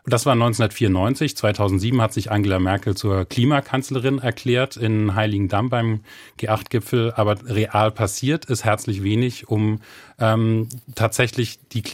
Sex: male